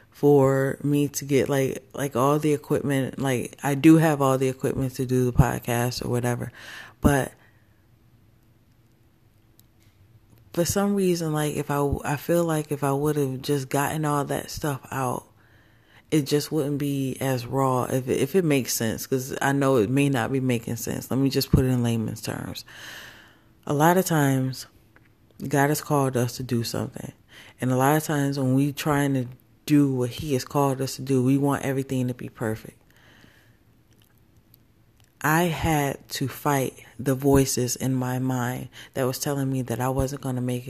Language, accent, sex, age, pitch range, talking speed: English, American, female, 20-39, 120-140 Hz, 180 wpm